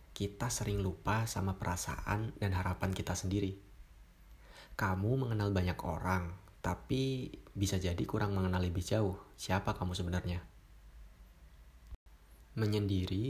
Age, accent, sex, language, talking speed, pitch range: 30-49, native, male, Indonesian, 110 wpm, 90-105 Hz